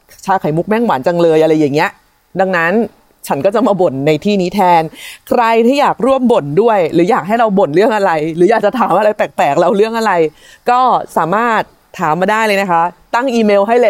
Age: 30-49